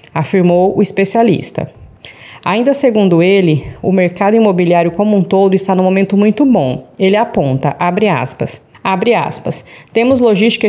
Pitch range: 175-205 Hz